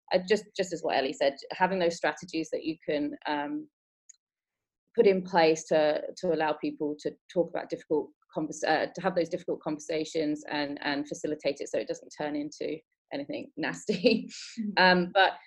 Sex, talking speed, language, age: female, 175 wpm, English, 30-49